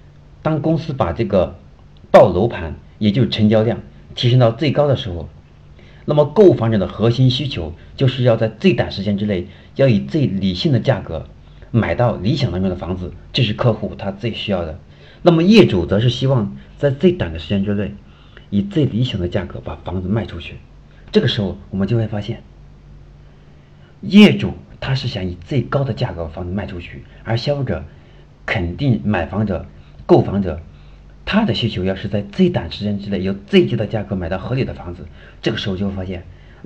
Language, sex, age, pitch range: Chinese, male, 50-69, 85-120 Hz